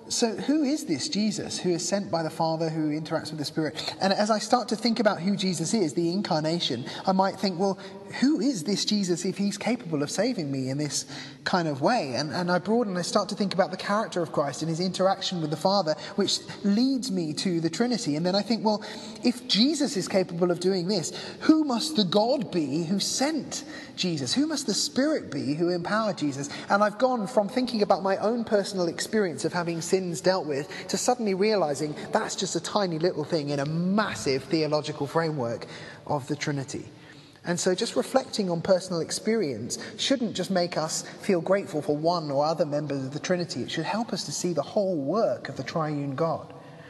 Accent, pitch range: British, 155-210 Hz